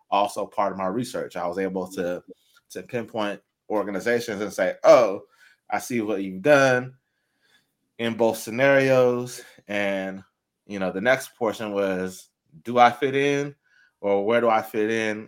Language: English